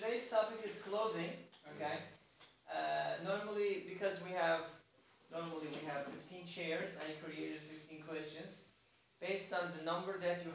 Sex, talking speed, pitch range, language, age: male, 140 wpm, 160-205 Hz, English, 40-59